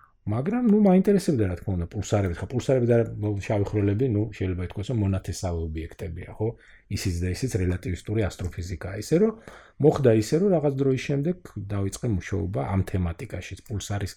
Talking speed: 195 wpm